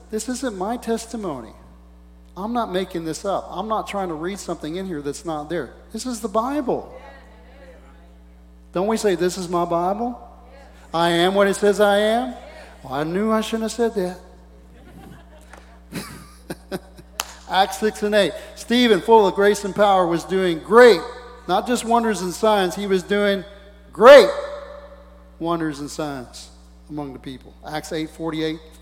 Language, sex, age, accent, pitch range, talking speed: English, male, 40-59, American, 155-200 Hz, 155 wpm